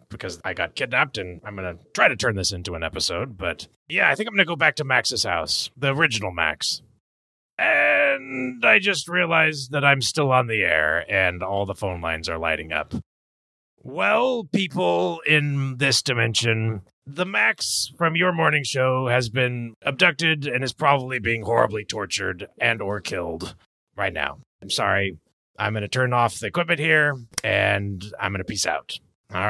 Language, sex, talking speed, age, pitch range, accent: English, male, 185 wpm, 30-49, 95-140 Hz, American